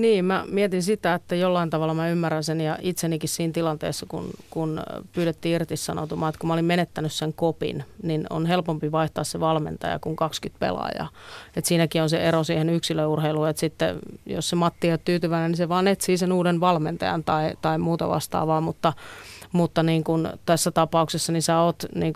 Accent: native